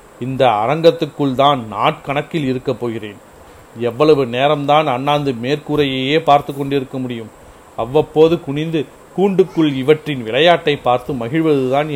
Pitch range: 125-155 Hz